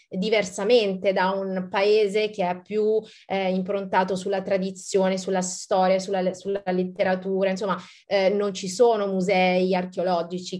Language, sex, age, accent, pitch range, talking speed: Italian, female, 30-49, native, 185-220 Hz, 130 wpm